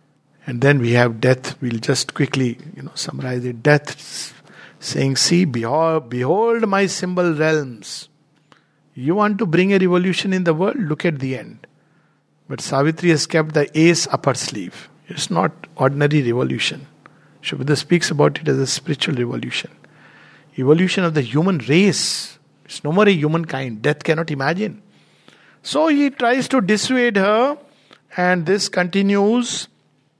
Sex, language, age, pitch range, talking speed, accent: male, English, 50-69, 135-175 Hz, 155 wpm, Indian